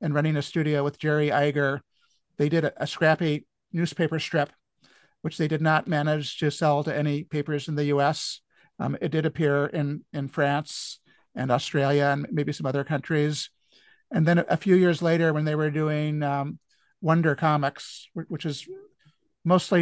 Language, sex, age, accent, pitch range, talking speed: English, male, 50-69, American, 150-165 Hz, 175 wpm